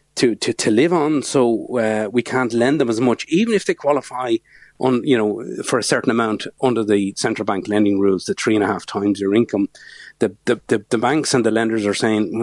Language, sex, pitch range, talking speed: English, male, 105-125 Hz, 230 wpm